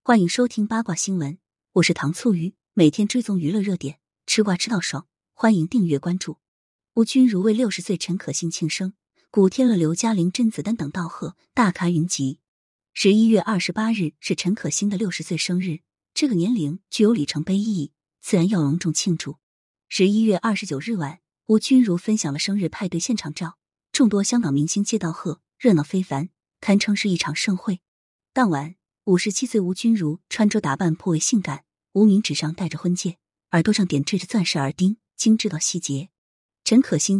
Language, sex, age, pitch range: Chinese, female, 20-39, 160-215 Hz